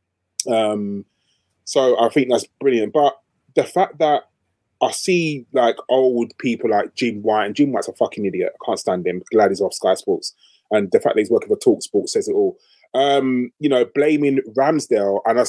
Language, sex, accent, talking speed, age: English, male, British, 200 wpm, 20-39